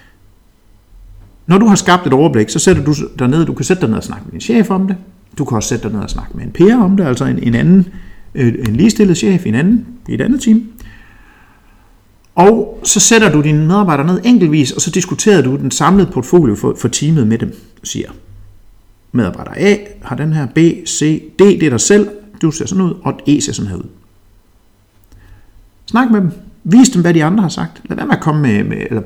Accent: native